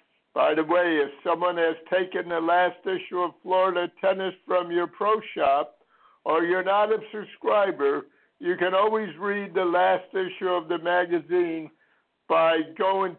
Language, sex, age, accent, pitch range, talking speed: English, male, 60-79, American, 150-195 Hz, 155 wpm